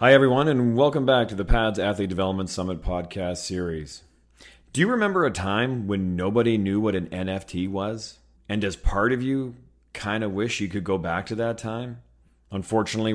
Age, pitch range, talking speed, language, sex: 40-59, 90-120 Hz, 185 wpm, English, male